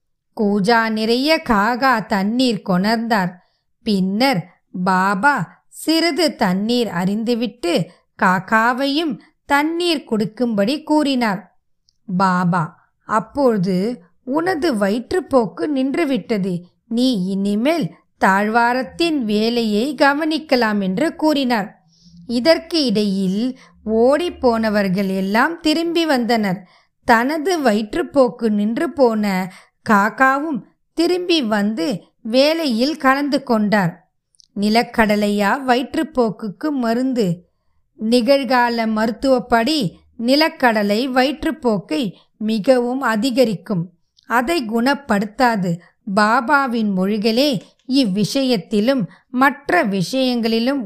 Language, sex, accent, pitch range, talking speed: Tamil, female, native, 205-275 Hz, 60 wpm